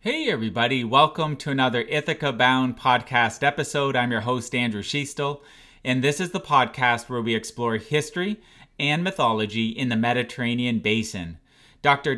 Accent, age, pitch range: American, 30-49, 115-130 Hz